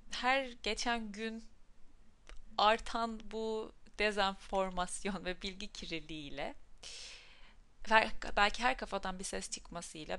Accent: native